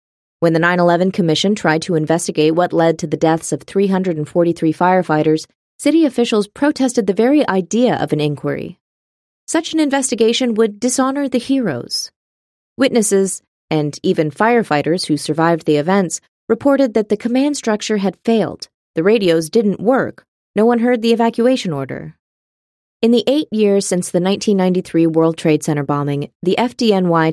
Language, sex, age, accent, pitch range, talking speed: English, female, 30-49, American, 155-215 Hz, 150 wpm